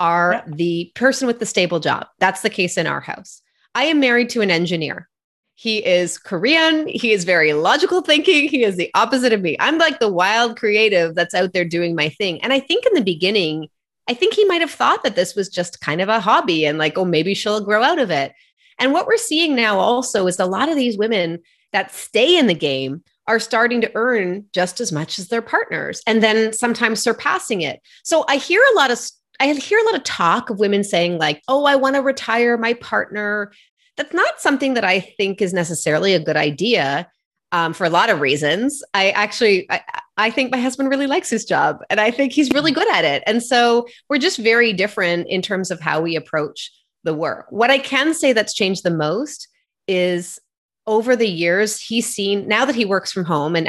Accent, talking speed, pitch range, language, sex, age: American, 220 wpm, 175-270 Hz, English, female, 30-49